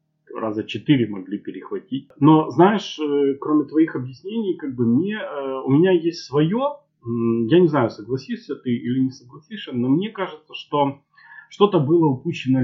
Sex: male